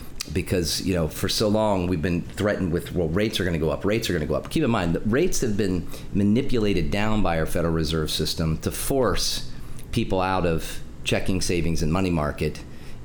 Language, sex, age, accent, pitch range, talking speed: English, male, 40-59, American, 85-105 Hz, 205 wpm